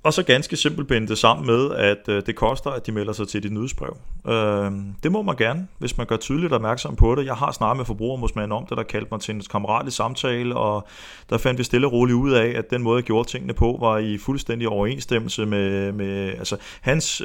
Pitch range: 105-130 Hz